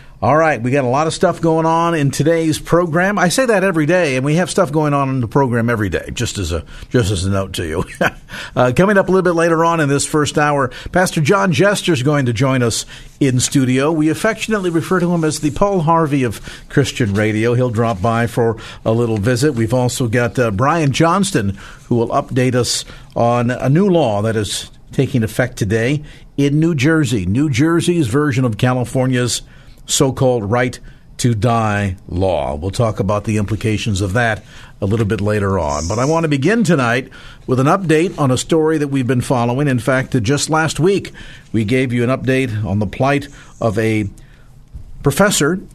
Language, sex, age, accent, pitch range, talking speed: English, male, 50-69, American, 115-155 Hz, 200 wpm